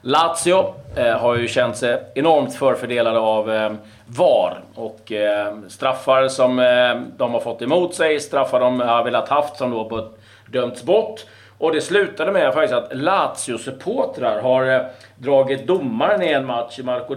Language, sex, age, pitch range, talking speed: Swedish, male, 40-59, 115-145 Hz, 175 wpm